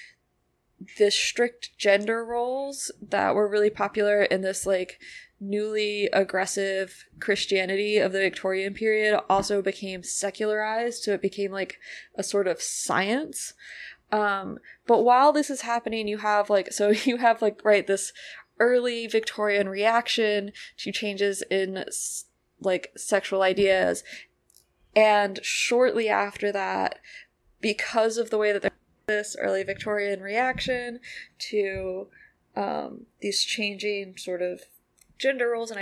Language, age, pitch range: English, 20-39, 195-225 Hz